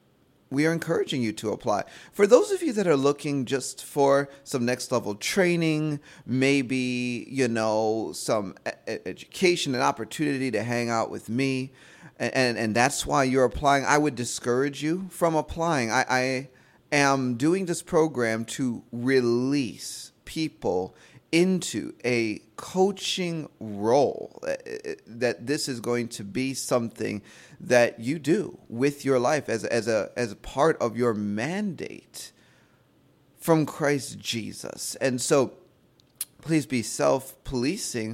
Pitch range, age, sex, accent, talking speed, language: 120-150 Hz, 30-49, male, American, 135 wpm, English